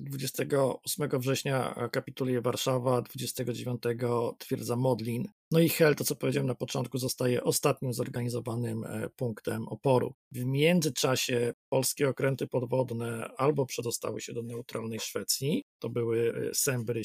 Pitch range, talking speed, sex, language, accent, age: 125-145 Hz, 120 wpm, male, Polish, native, 40-59